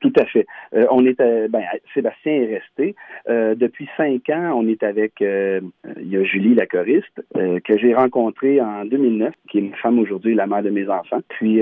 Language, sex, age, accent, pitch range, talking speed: French, male, 40-59, Canadian, 105-125 Hz, 215 wpm